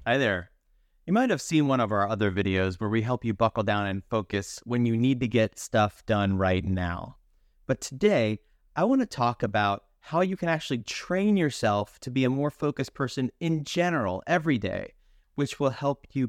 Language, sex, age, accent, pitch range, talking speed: English, male, 30-49, American, 100-135 Hz, 205 wpm